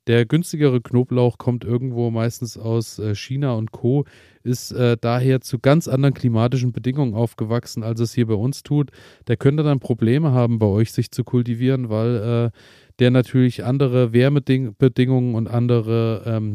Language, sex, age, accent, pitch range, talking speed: German, male, 30-49, German, 115-130 Hz, 160 wpm